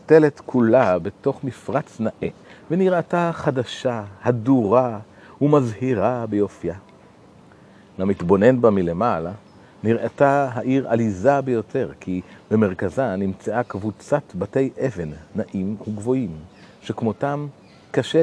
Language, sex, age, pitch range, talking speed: Hebrew, male, 40-59, 100-135 Hz, 90 wpm